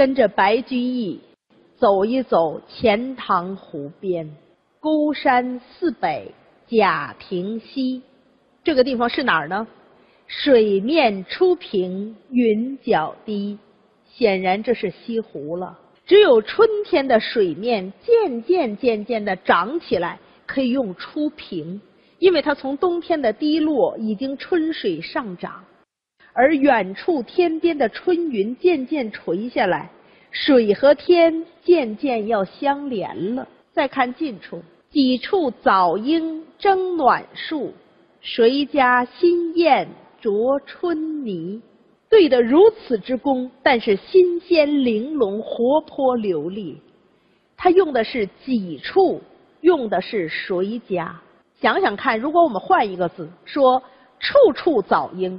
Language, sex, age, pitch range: Chinese, female, 40-59, 210-320 Hz